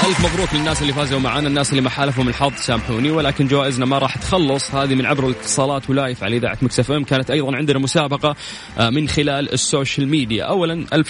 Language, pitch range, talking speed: Arabic, 110-140 Hz, 190 wpm